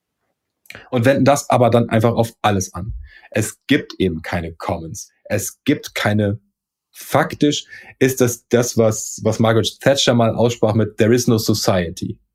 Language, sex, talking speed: German, male, 155 wpm